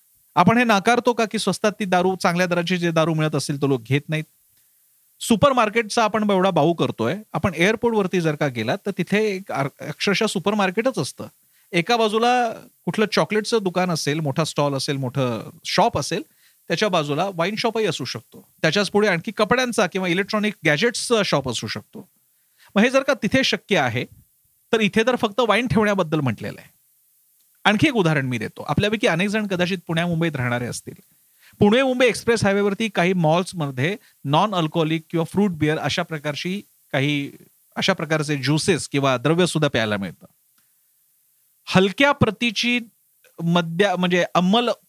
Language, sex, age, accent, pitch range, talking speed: Marathi, male, 40-59, native, 155-215 Hz, 125 wpm